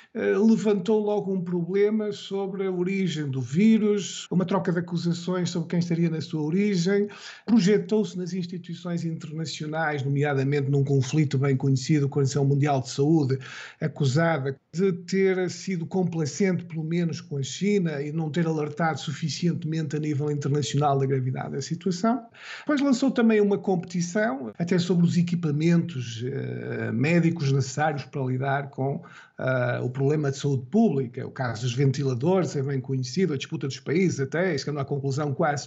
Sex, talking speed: male, 155 wpm